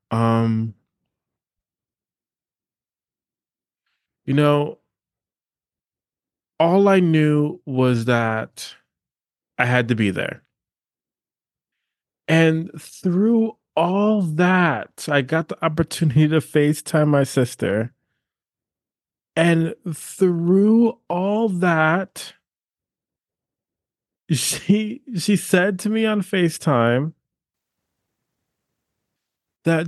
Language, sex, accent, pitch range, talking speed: English, male, American, 130-180 Hz, 75 wpm